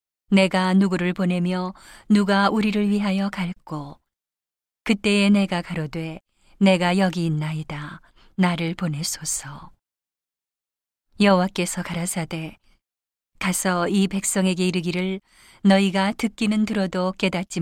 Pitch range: 170-195 Hz